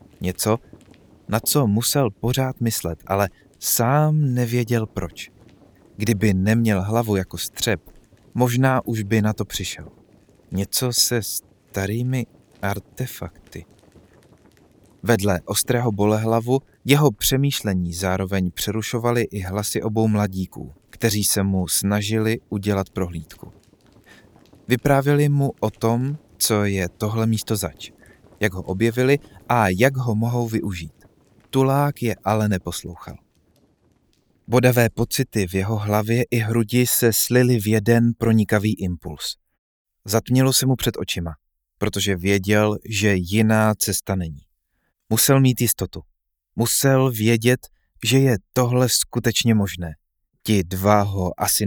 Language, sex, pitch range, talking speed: Czech, male, 95-120 Hz, 115 wpm